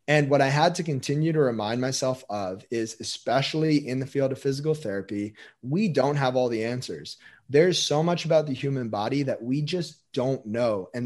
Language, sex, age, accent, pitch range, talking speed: English, male, 30-49, American, 115-145 Hz, 200 wpm